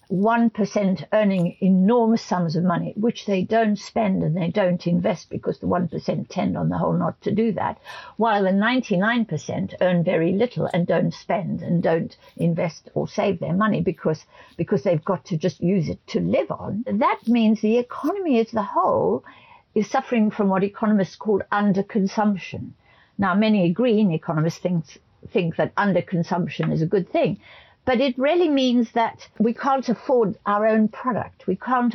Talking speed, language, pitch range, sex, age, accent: 170 wpm, English, 185-235 Hz, female, 60-79, British